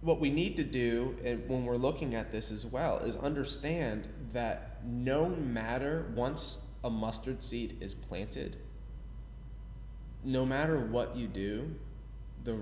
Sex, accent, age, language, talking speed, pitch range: male, American, 20-39, English, 145 wpm, 105-125 Hz